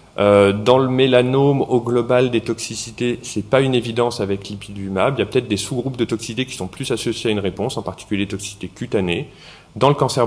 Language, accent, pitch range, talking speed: French, French, 100-125 Hz, 215 wpm